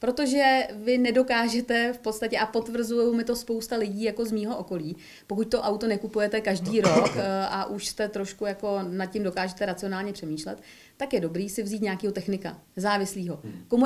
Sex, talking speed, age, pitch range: female, 175 wpm, 30-49, 200-235 Hz